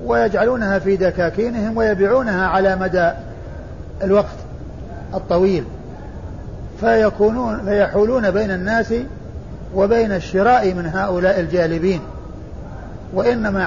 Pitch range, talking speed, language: 175-215 Hz, 75 wpm, Arabic